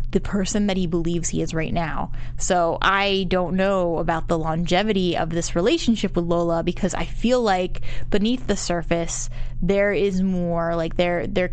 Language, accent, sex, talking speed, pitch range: English, American, female, 175 wpm, 170-210 Hz